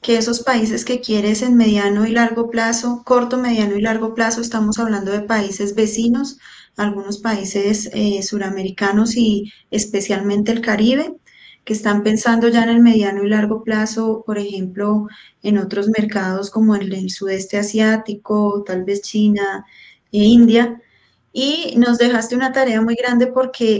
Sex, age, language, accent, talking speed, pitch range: female, 10-29, Spanish, Colombian, 155 wpm, 205-230 Hz